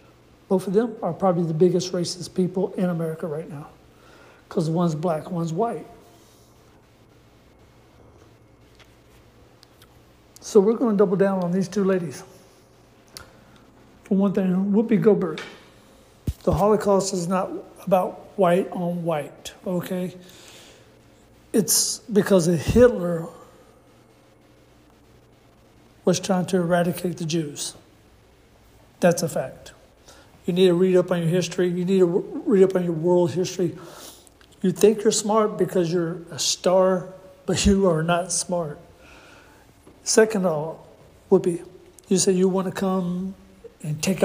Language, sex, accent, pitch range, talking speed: English, male, American, 175-195 Hz, 135 wpm